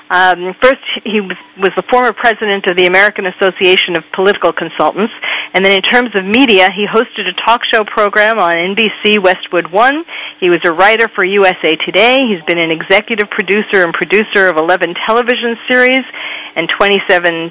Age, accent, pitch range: 40-59, American, 185-225 Hz